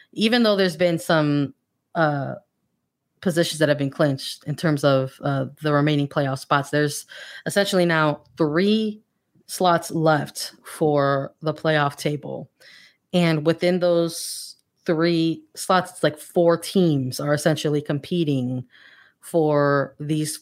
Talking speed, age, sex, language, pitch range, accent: 125 wpm, 30-49, female, English, 150-180 Hz, American